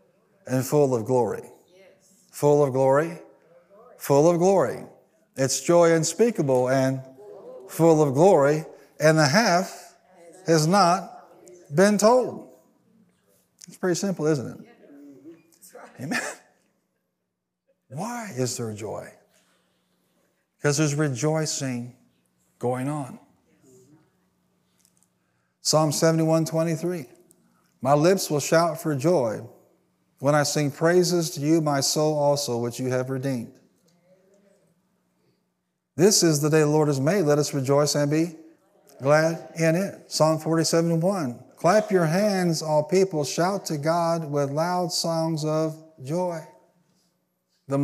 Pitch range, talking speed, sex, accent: 140-175 Hz, 120 wpm, male, American